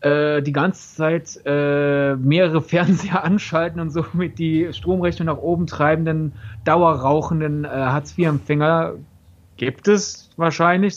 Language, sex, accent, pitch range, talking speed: German, male, German, 145-175 Hz, 100 wpm